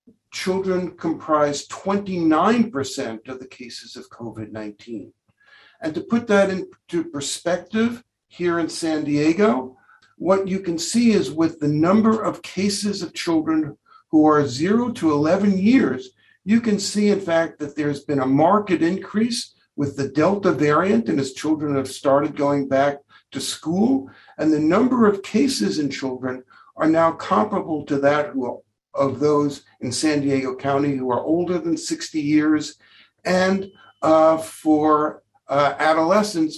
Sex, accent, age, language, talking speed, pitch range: male, American, 60-79, English, 150 wpm, 140-195 Hz